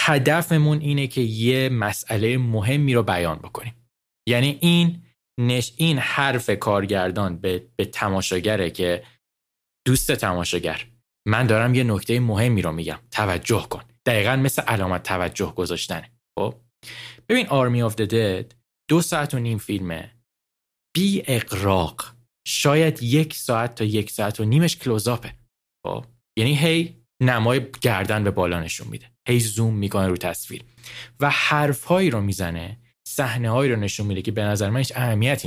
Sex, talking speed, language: male, 140 wpm, Persian